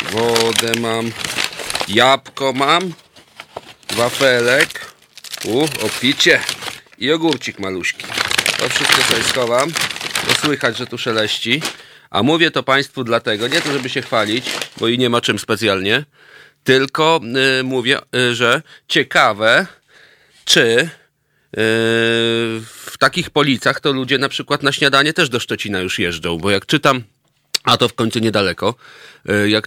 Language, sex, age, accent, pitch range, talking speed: Polish, male, 40-59, native, 115-135 Hz, 130 wpm